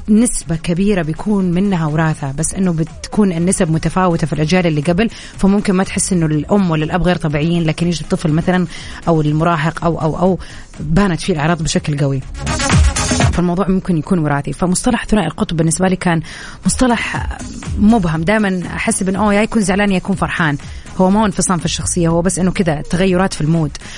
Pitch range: 165-215 Hz